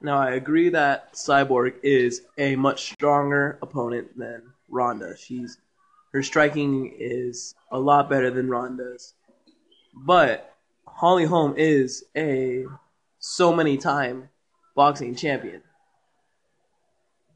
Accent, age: American, 20-39